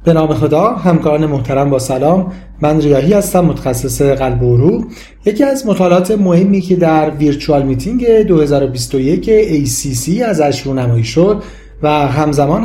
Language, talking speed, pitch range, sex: Persian, 150 wpm, 145-195 Hz, male